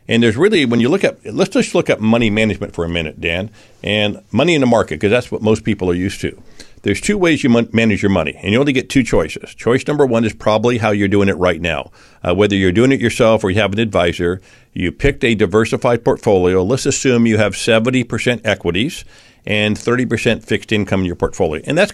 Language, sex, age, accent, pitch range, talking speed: English, male, 50-69, American, 100-120 Hz, 235 wpm